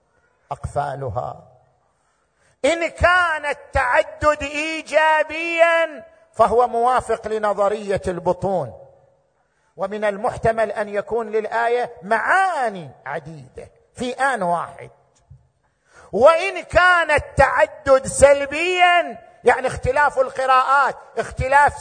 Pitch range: 200-275 Hz